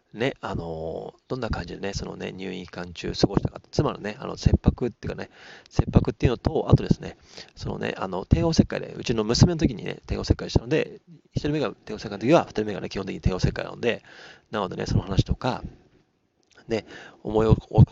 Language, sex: Japanese, male